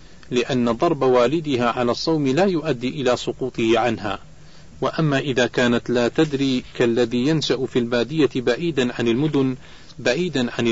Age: 40-59